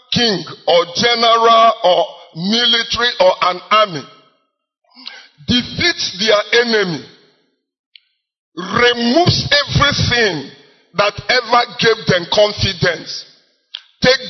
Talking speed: 80 wpm